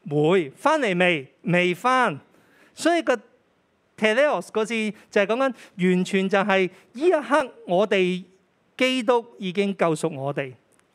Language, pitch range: Chinese, 170-230 Hz